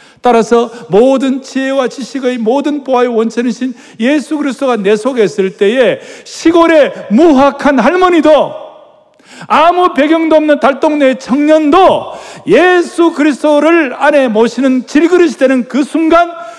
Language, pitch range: Korean, 210-305 Hz